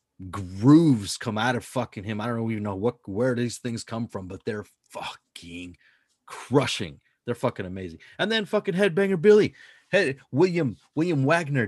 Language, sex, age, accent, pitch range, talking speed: English, male, 30-49, American, 100-135 Hz, 165 wpm